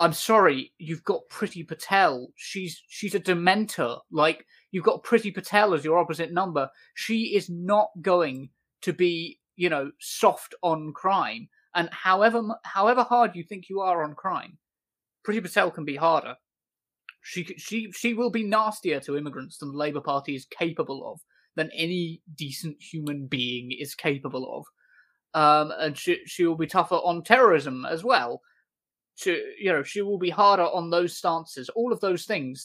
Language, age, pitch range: English, 20-39, 150-195 Hz